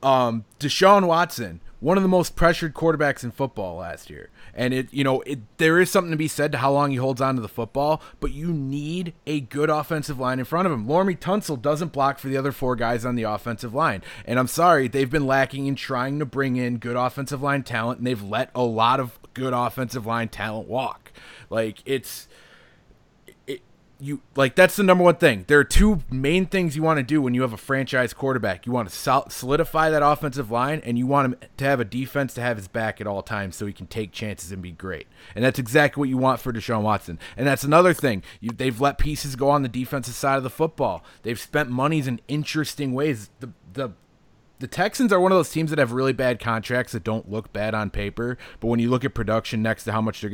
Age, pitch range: 30-49, 115-150 Hz